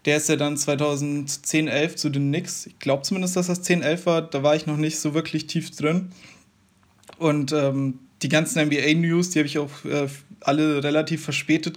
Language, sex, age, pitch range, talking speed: German, male, 20-39, 140-155 Hz, 190 wpm